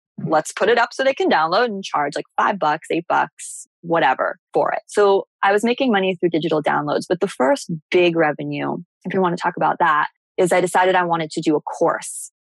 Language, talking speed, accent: English, 225 wpm, American